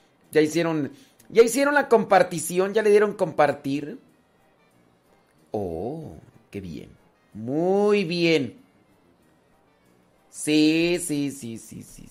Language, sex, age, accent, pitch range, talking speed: Spanish, male, 40-59, Mexican, 135-185 Hz, 95 wpm